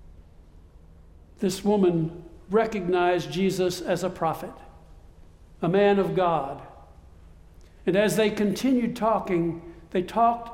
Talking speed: 105 wpm